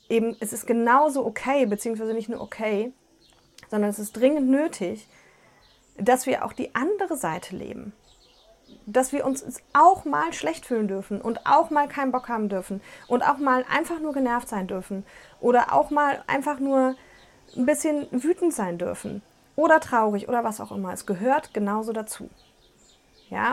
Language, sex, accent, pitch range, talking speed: German, female, German, 205-265 Hz, 165 wpm